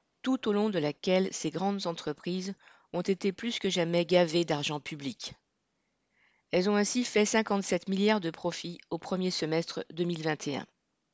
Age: 40-59